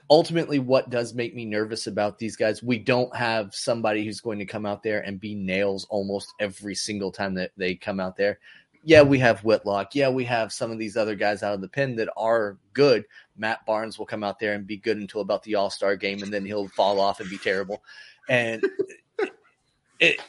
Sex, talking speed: male, 220 wpm